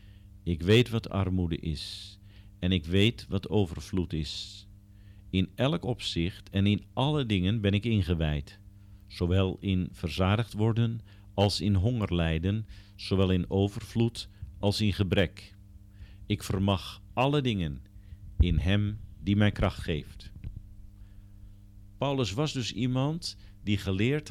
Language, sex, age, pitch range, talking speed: Dutch, male, 50-69, 95-105 Hz, 125 wpm